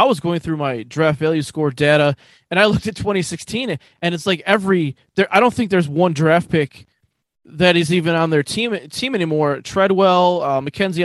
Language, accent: English, American